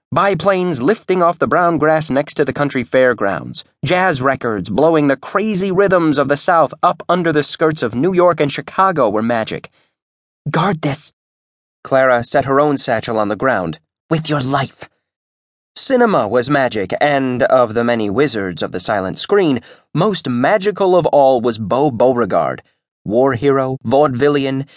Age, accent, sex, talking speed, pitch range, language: 30-49, American, male, 160 wpm, 115-155 Hz, English